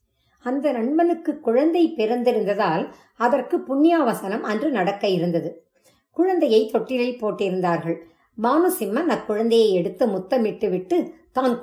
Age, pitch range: 50-69, 190-265 Hz